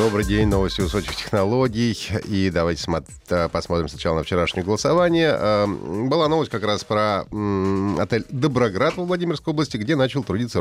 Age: 30-49